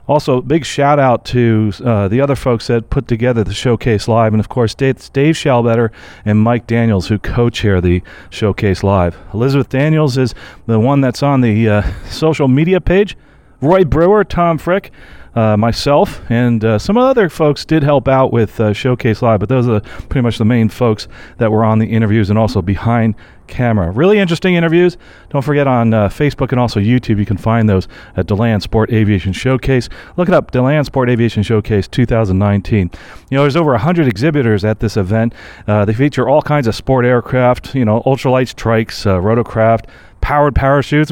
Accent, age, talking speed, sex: American, 40-59, 185 wpm, male